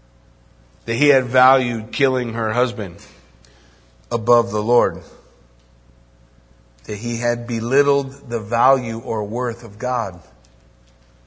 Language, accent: English, American